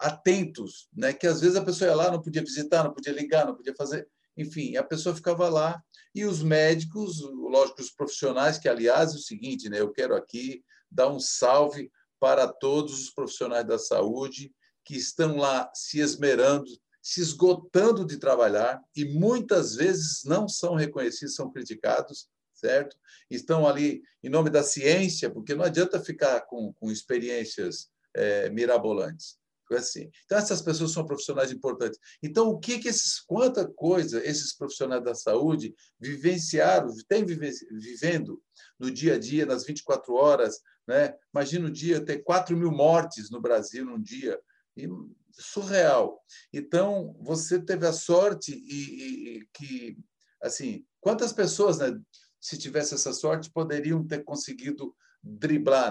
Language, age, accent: Portuguese, 50-69, Brazilian